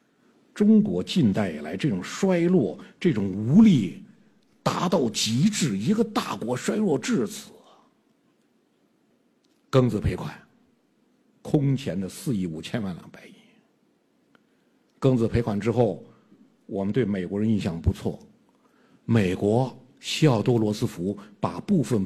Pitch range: 105-175 Hz